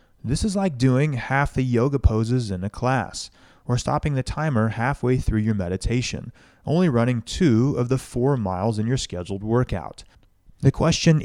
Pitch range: 105-140 Hz